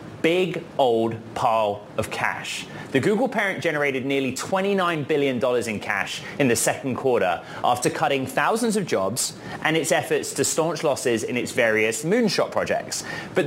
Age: 30-49